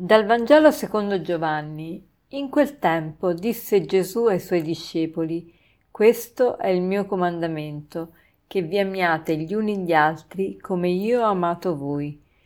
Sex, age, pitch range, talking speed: female, 40-59, 160-200 Hz, 140 wpm